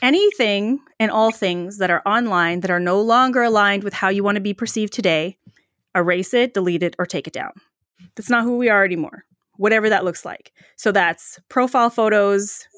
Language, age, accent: English, 20-39, American